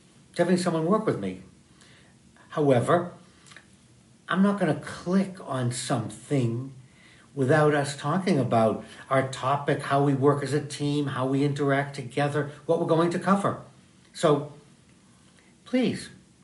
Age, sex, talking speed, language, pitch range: 60-79, male, 130 wpm, English, 130-170 Hz